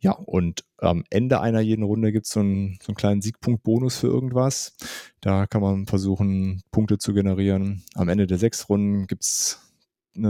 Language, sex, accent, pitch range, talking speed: German, male, German, 95-120 Hz, 180 wpm